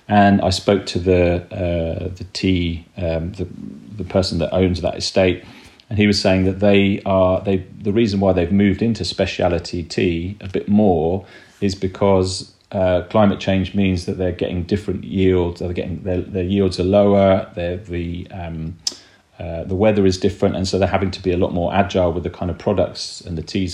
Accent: British